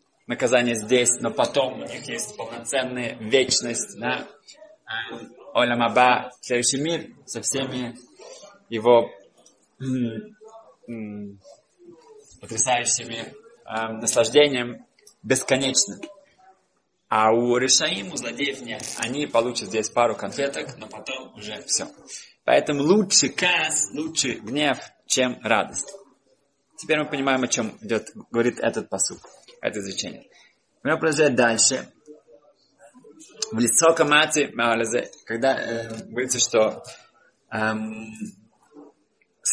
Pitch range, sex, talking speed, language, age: 115-150 Hz, male, 95 wpm, Russian, 20-39